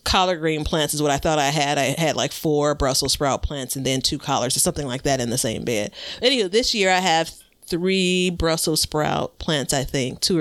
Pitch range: 145-185 Hz